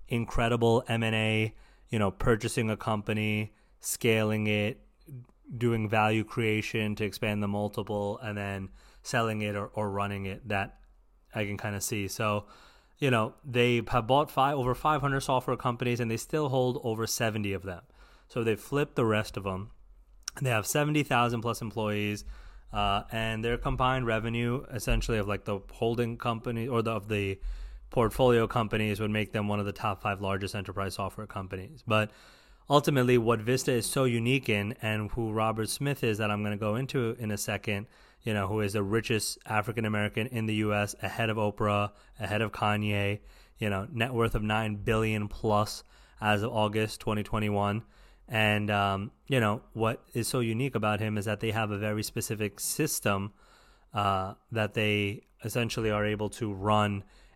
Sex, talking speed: male, 175 wpm